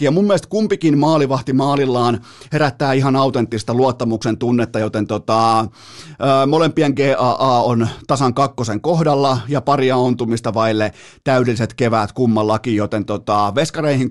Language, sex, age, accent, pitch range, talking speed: Finnish, male, 30-49, native, 115-140 Hz, 130 wpm